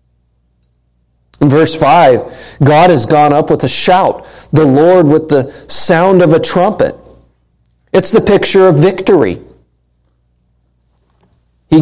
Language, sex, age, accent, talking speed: English, male, 50-69, American, 120 wpm